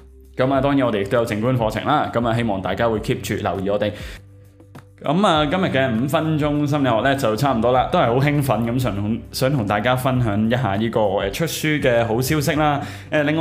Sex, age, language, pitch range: male, 20-39, Chinese, 100-135 Hz